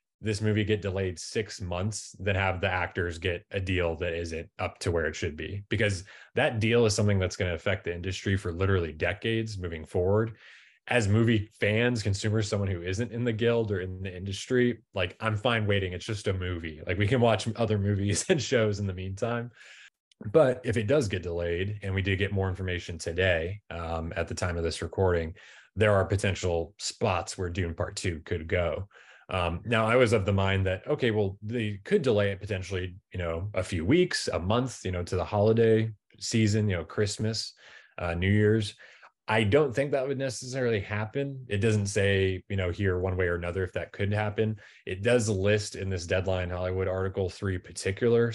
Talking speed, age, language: 205 wpm, 20-39, English